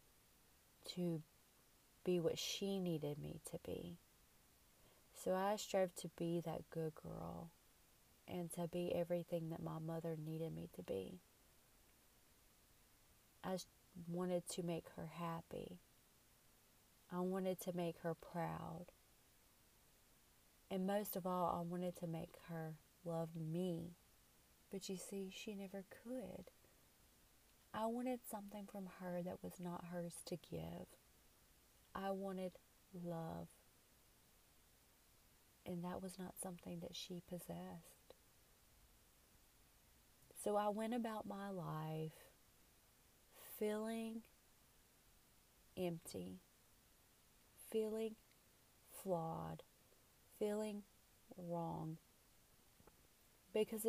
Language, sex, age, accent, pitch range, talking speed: English, female, 30-49, American, 165-195 Hz, 100 wpm